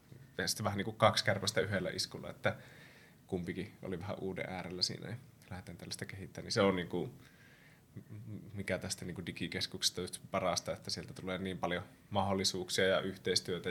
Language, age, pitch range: Finnish, 20-39, 95-115 Hz